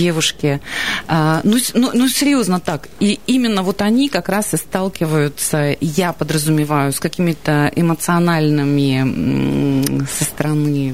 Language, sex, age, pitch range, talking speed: Russian, female, 30-49, 150-200 Hz, 115 wpm